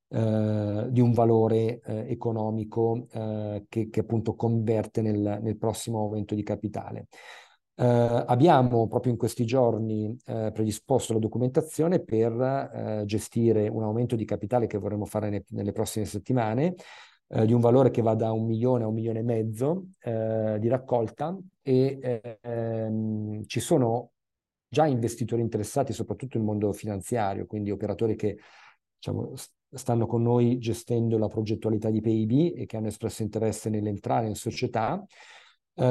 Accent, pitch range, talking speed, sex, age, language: native, 110-125 Hz, 150 wpm, male, 40-59, Italian